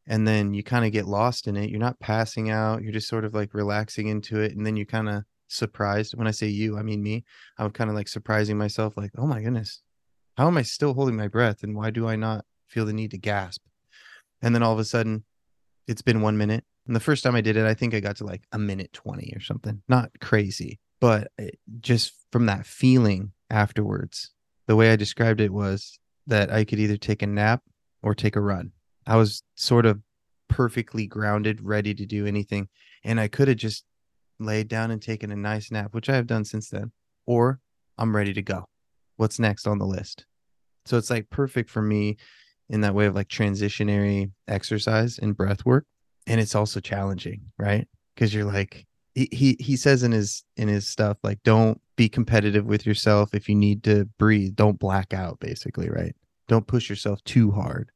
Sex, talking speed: male, 215 wpm